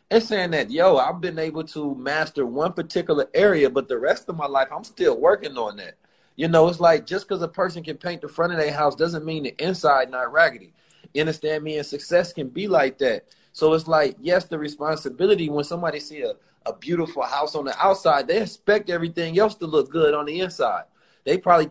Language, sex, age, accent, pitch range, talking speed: English, male, 30-49, American, 150-195 Hz, 225 wpm